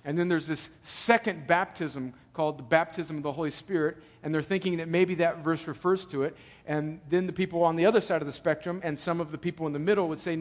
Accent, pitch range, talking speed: American, 160-225 Hz, 255 wpm